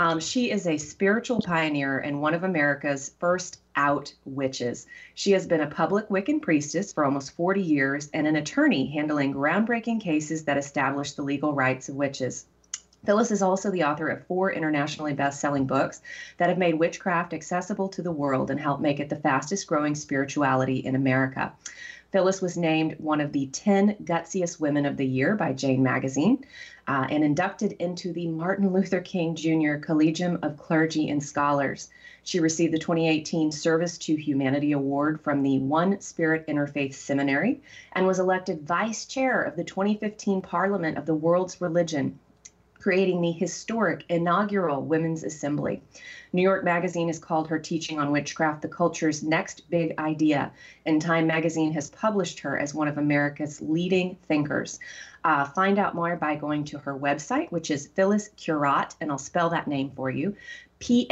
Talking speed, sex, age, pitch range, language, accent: 170 wpm, female, 30-49, 145-185 Hz, English, American